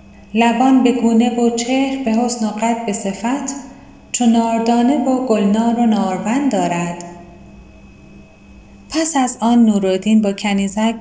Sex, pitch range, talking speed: female, 200-260 Hz, 130 wpm